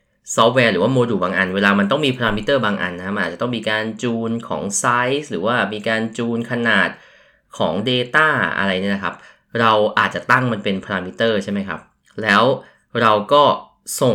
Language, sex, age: Thai, male, 20-39